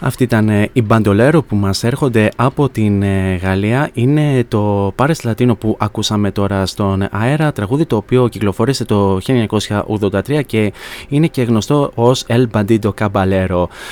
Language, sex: Greek, male